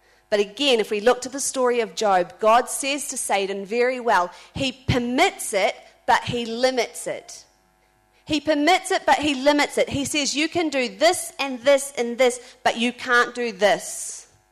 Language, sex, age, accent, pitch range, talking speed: English, female, 40-59, Australian, 205-295 Hz, 185 wpm